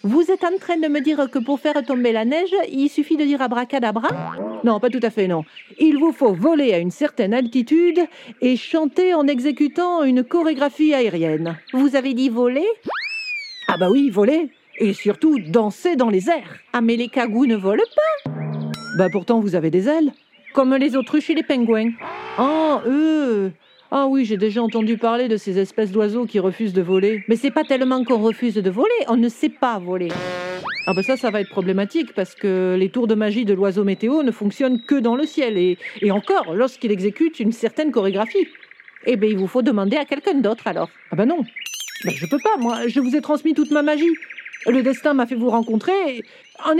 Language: French